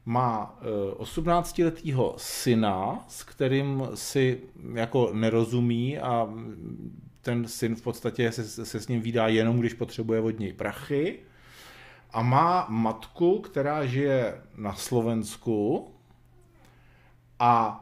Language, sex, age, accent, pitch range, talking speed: Czech, male, 40-59, native, 110-135 Hz, 115 wpm